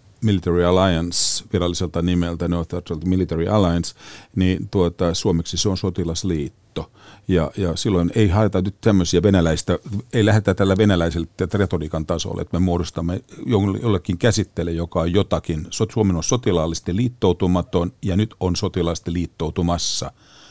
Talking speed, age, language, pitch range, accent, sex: 125 wpm, 50-69, Finnish, 85-105 Hz, native, male